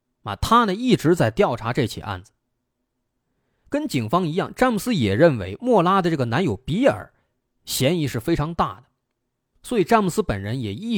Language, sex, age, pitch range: Chinese, male, 30-49, 115-180 Hz